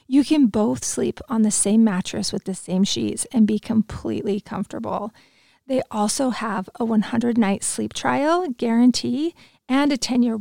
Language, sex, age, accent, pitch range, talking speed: English, female, 30-49, American, 200-255 Hz, 155 wpm